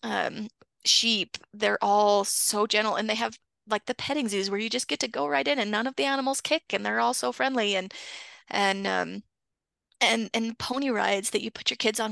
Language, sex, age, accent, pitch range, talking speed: English, female, 20-39, American, 200-240 Hz, 225 wpm